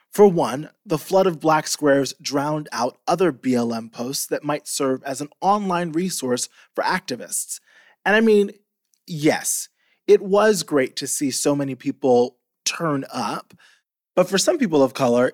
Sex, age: male, 20-39